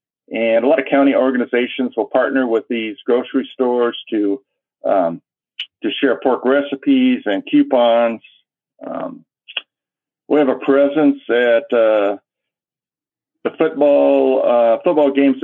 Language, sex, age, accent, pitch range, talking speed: English, male, 50-69, American, 115-140 Hz, 125 wpm